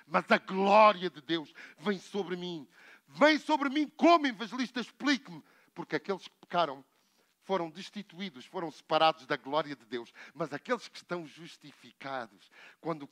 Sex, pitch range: male, 170-245 Hz